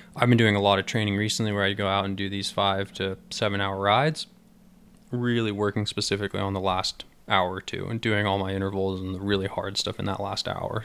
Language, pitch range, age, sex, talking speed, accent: English, 100-115 Hz, 20-39, male, 240 wpm, American